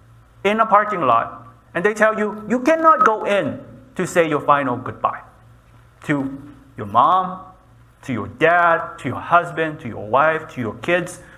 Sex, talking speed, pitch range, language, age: male, 170 wpm, 120-185 Hz, English, 30-49